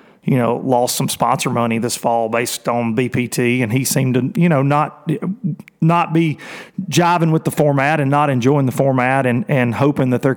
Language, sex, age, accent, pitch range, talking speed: English, male, 30-49, American, 130-175 Hz, 195 wpm